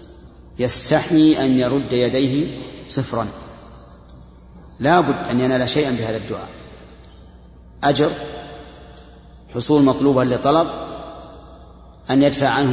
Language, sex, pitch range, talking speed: Arabic, male, 90-140 Hz, 90 wpm